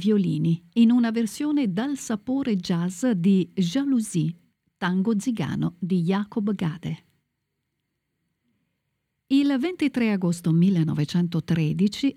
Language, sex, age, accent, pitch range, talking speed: Italian, female, 50-69, native, 175-235 Hz, 90 wpm